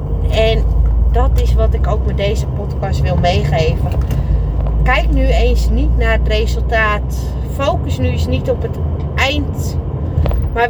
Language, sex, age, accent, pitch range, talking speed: Dutch, female, 30-49, Dutch, 75-85 Hz, 145 wpm